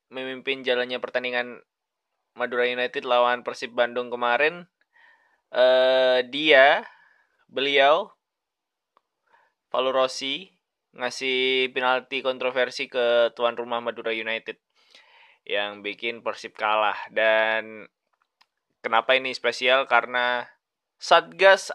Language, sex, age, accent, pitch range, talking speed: Indonesian, male, 20-39, native, 120-145 Hz, 90 wpm